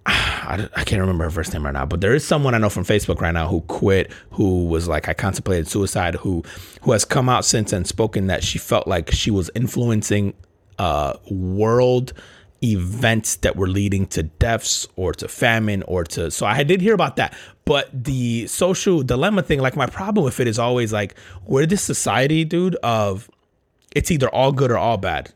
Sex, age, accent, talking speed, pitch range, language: male, 30-49, American, 200 wpm, 100-145 Hz, English